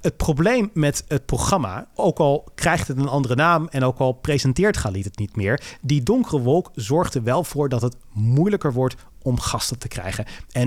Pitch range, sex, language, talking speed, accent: 120-155 Hz, male, Dutch, 200 wpm, Dutch